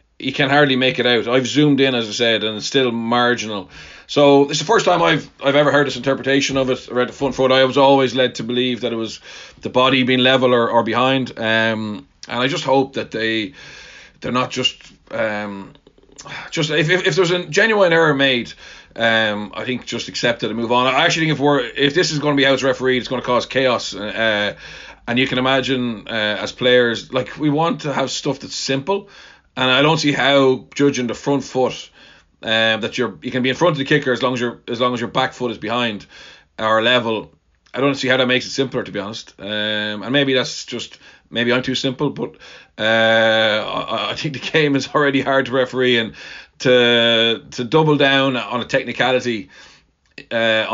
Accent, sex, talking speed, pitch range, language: Irish, male, 225 wpm, 115-135 Hz, English